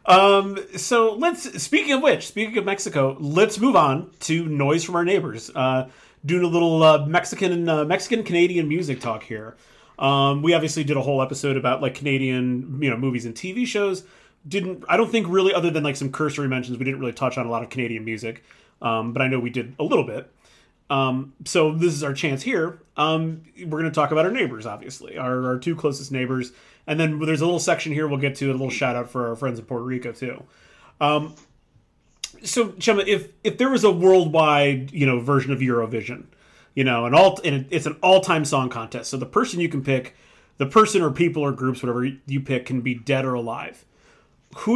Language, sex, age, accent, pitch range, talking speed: English, male, 30-49, American, 130-175 Hz, 215 wpm